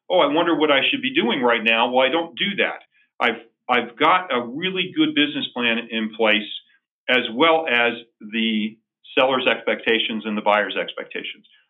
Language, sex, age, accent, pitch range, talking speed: English, male, 40-59, American, 110-155 Hz, 180 wpm